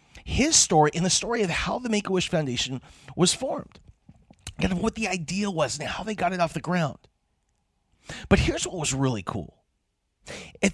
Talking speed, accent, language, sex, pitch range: 180 wpm, American, English, male, 150-235 Hz